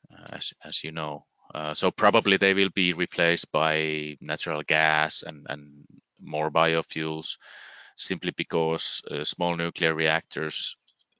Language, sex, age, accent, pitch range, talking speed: English, male, 30-49, Finnish, 80-95 Hz, 130 wpm